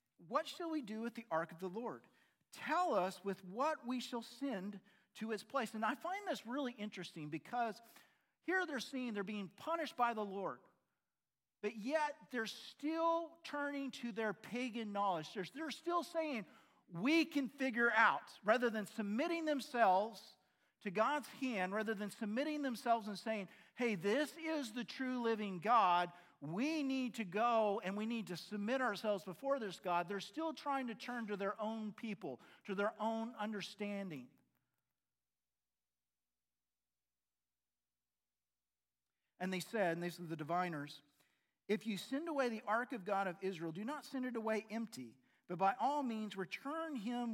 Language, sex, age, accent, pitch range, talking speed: English, male, 50-69, American, 180-250 Hz, 160 wpm